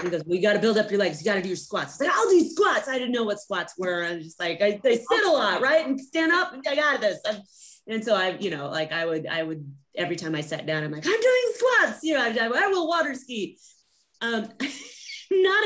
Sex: female